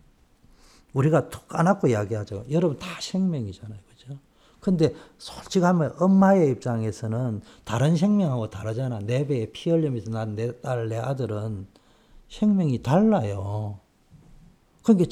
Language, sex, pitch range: Korean, male, 110-175 Hz